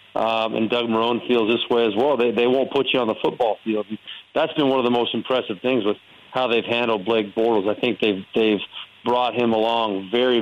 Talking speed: 235 wpm